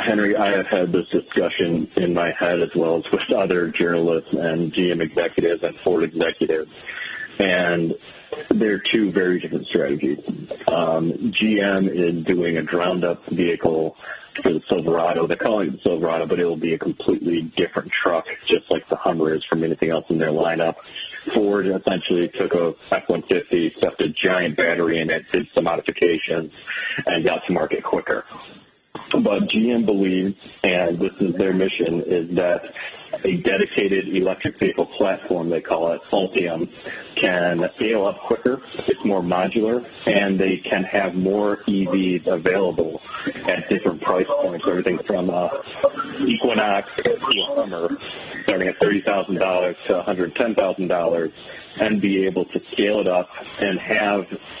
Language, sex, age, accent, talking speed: English, male, 40-59, American, 150 wpm